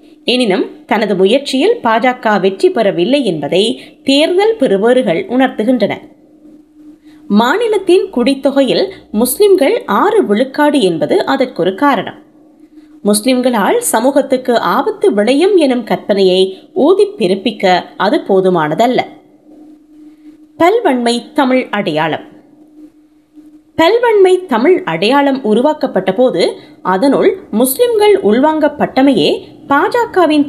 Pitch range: 250-320 Hz